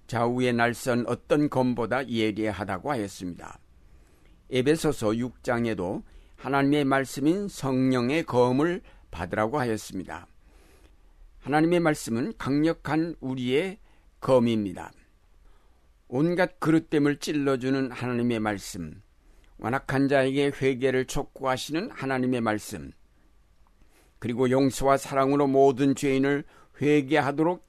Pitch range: 110-145 Hz